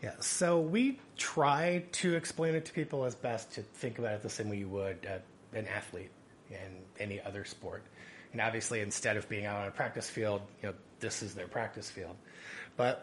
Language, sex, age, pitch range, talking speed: English, male, 30-49, 100-120 Hz, 205 wpm